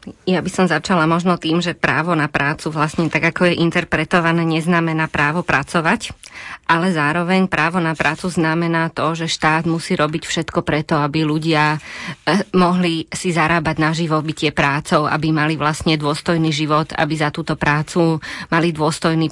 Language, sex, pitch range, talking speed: Slovak, female, 160-175 Hz, 155 wpm